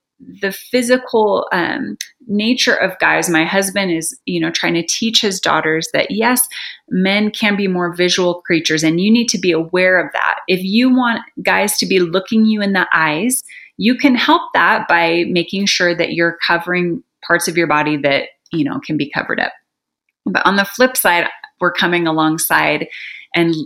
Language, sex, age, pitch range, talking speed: English, female, 30-49, 170-230 Hz, 185 wpm